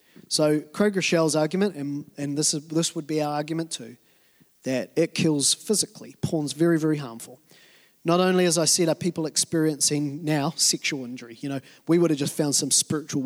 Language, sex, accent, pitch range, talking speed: English, male, Australian, 155-235 Hz, 190 wpm